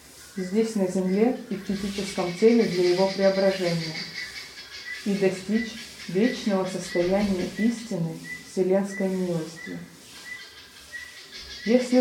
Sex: female